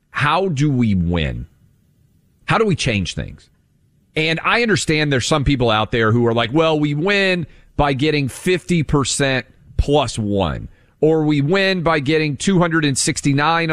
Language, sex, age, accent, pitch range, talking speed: English, male, 40-59, American, 115-160 Hz, 150 wpm